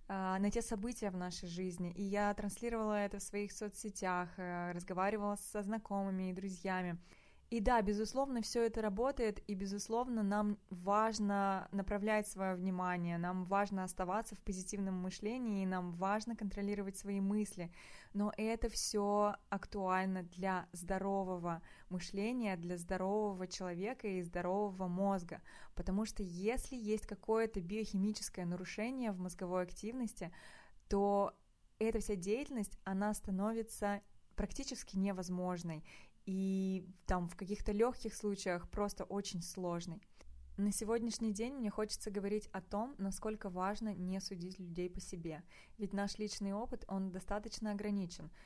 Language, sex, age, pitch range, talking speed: Russian, female, 20-39, 185-210 Hz, 130 wpm